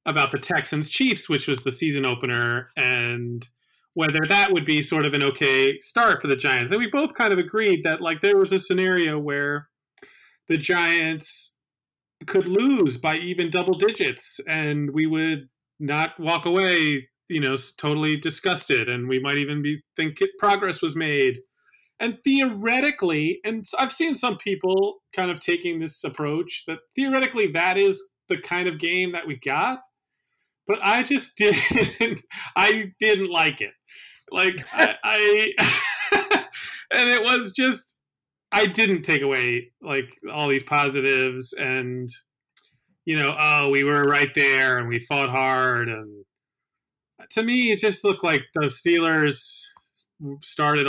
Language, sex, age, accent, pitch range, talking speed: English, male, 30-49, American, 140-200 Hz, 155 wpm